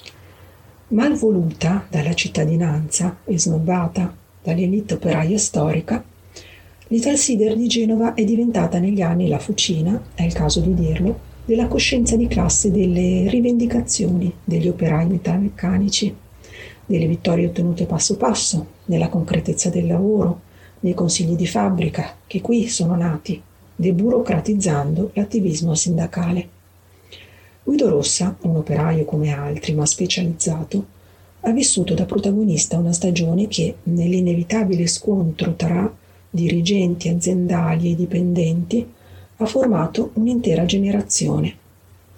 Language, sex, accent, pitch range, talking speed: Italian, female, native, 160-200 Hz, 110 wpm